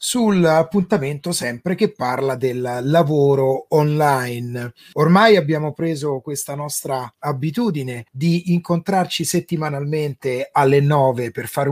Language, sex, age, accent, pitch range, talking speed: Italian, male, 30-49, native, 140-180 Hz, 110 wpm